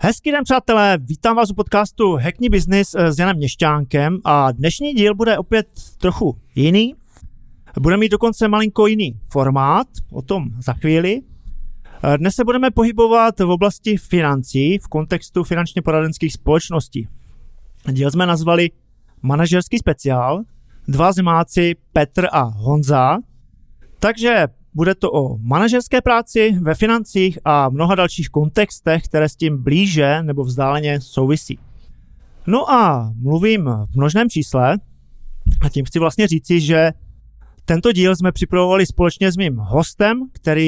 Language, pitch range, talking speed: Czech, 145-200 Hz, 135 wpm